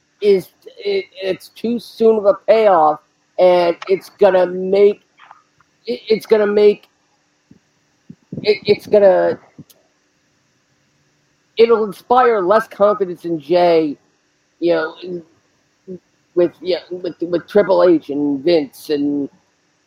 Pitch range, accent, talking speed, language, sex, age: 155-205 Hz, American, 120 wpm, English, male, 50-69